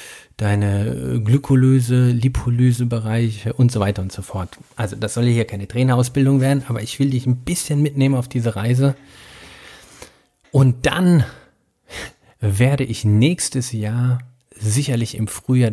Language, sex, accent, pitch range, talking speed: German, male, German, 105-130 Hz, 135 wpm